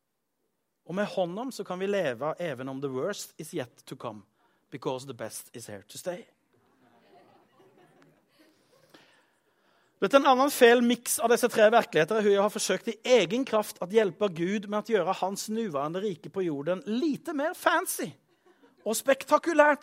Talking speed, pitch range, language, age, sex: 165 wpm, 150-240 Hz, Swedish, 30-49, male